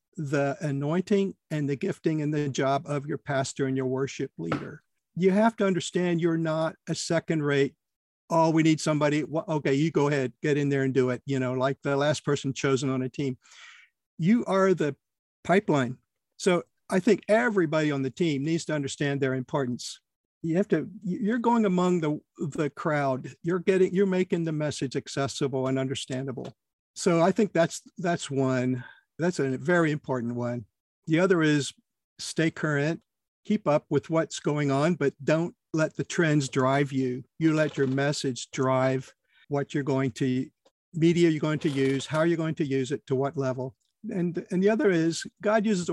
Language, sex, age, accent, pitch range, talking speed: English, male, 50-69, American, 135-170 Hz, 185 wpm